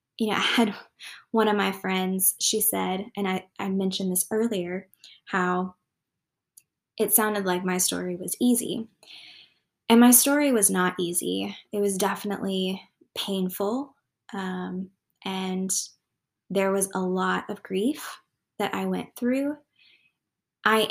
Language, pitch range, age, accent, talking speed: English, 185-215 Hz, 10-29, American, 135 wpm